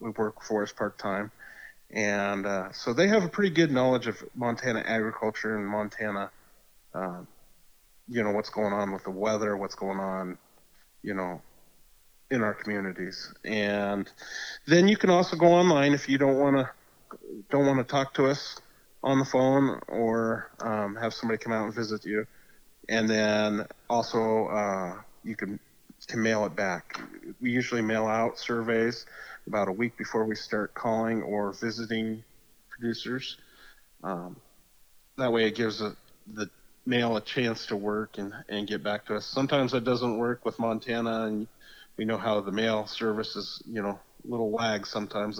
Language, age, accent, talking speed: English, 30-49, American, 165 wpm